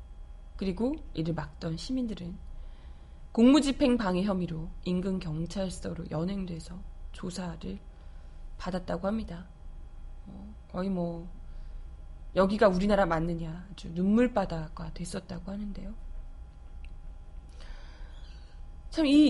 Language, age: Korean, 20-39